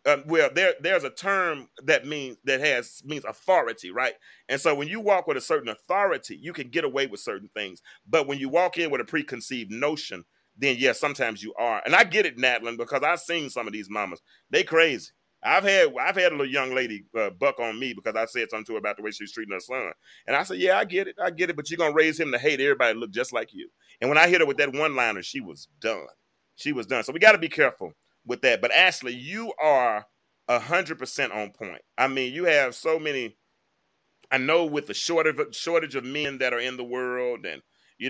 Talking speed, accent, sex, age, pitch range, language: 245 wpm, American, male, 30-49, 120-165 Hz, English